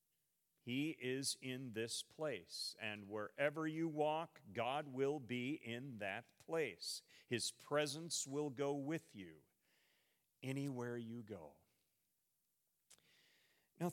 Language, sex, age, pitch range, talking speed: English, male, 40-59, 115-155 Hz, 110 wpm